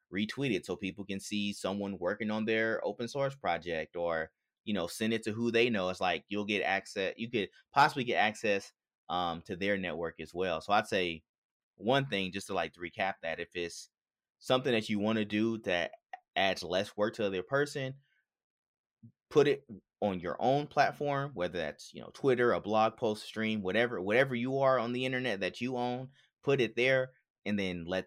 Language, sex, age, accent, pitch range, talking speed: English, male, 30-49, American, 90-120 Hz, 205 wpm